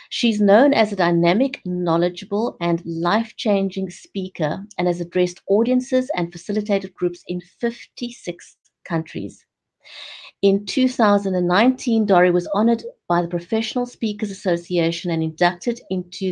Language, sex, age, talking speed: English, female, 50-69, 120 wpm